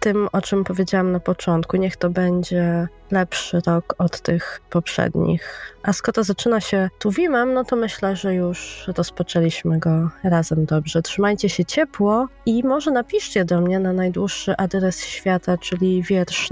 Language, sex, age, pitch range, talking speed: Polish, female, 20-39, 170-200 Hz, 155 wpm